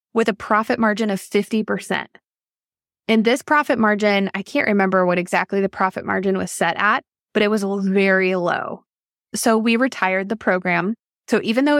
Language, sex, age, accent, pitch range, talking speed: English, female, 20-39, American, 195-230 Hz, 175 wpm